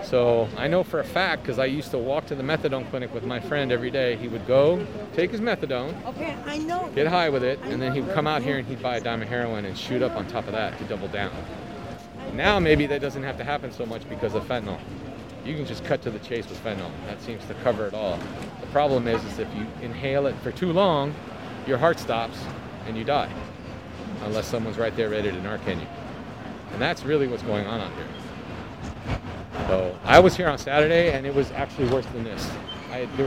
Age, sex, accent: 40-59, male, American